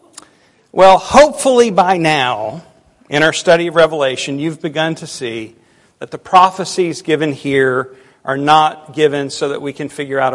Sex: male